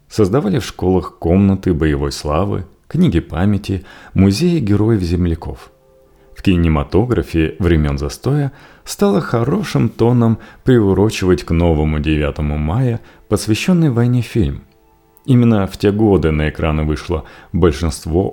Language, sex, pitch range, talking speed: Russian, male, 80-110 Hz, 110 wpm